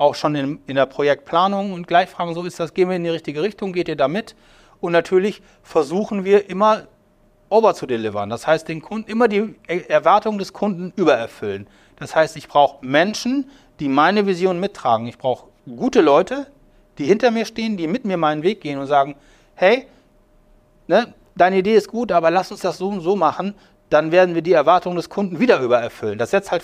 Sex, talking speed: male, 205 wpm